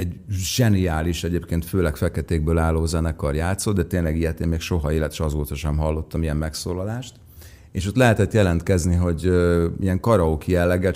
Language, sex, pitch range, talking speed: Hungarian, male, 85-110 Hz, 160 wpm